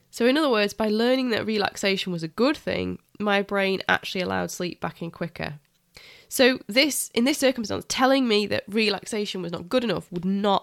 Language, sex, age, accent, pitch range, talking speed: English, female, 20-39, British, 180-230 Hz, 200 wpm